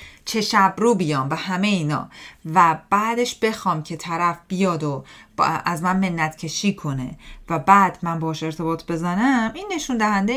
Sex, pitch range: female, 150-200 Hz